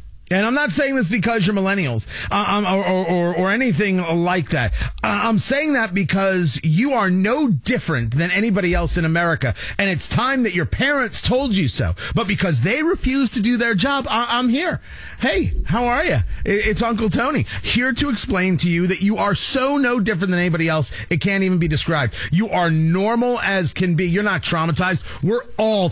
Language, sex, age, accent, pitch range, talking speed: English, male, 30-49, American, 165-230 Hz, 200 wpm